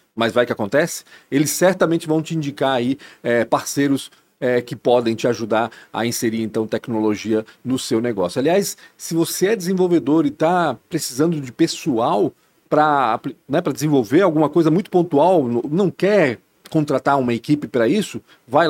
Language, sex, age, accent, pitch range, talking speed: Portuguese, male, 40-59, Brazilian, 120-155 Hz, 150 wpm